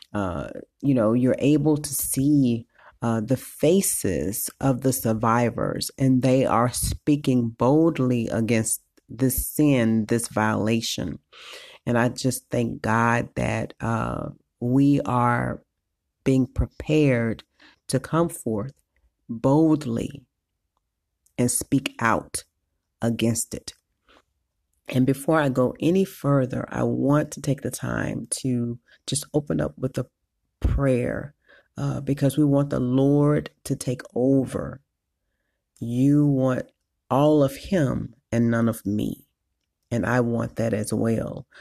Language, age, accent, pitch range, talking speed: English, 40-59, American, 115-140 Hz, 125 wpm